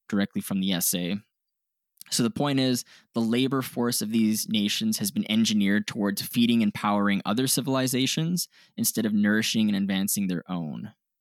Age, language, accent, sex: 10-29, English, American, male